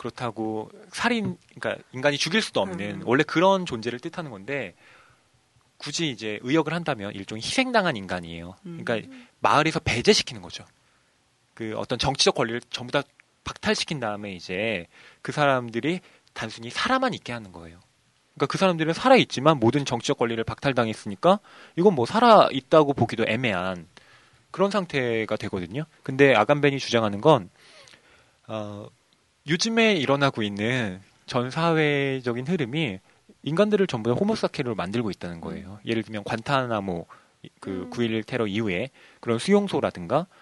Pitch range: 105-155 Hz